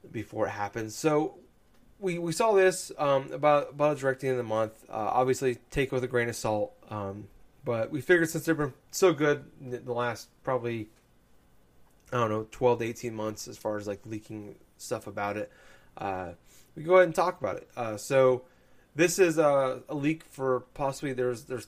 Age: 30-49